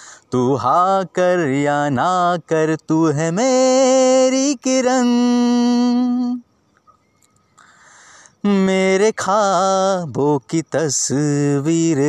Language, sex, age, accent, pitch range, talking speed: Hindi, male, 30-49, native, 160-245 Hz, 70 wpm